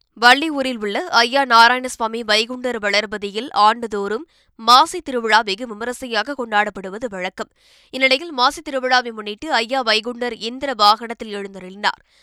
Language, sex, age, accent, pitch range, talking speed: Tamil, female, 20-39, native, 210-255 Hz, 105 wpm